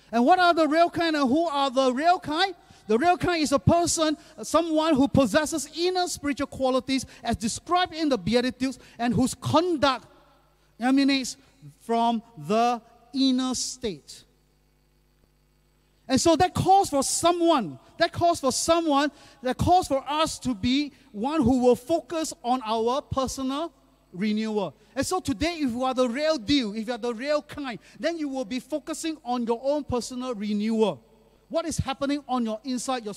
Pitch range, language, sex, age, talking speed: 215-295 Hz, English, male, 40-59, 170 wpm